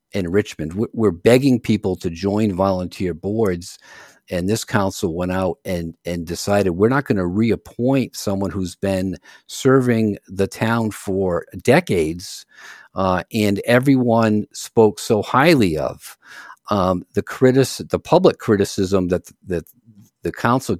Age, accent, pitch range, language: 50-69, American, 90-110 Hz, English